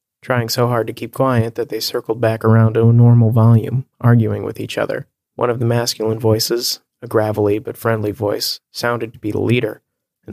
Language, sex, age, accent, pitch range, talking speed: English, male, 30-49, American, 115-125 Hz, 205 wpm